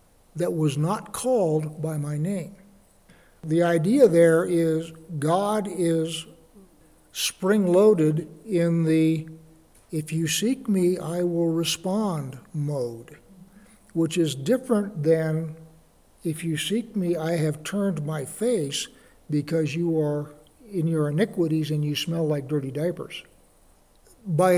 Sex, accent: male, American